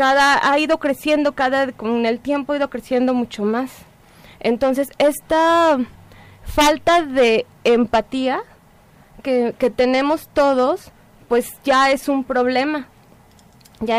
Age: 20-39